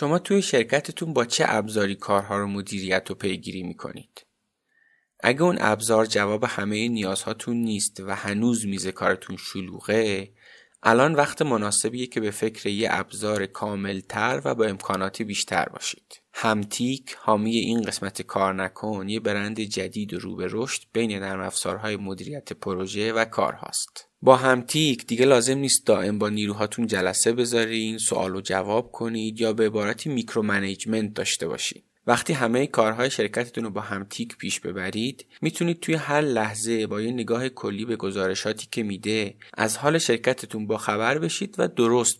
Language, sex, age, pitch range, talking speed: Persian, male, 20-39, 100-120 Hz, 150 wpm